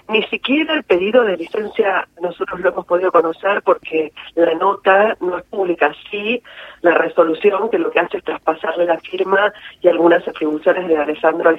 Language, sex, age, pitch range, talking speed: Spanish, female, 40-59, 160-205 Hz, 175 wpm